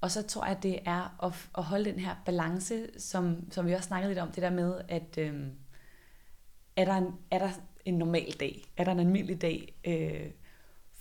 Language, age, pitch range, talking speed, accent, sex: Danish, 30-49, 170-195 Hz, 205 wpm, native, female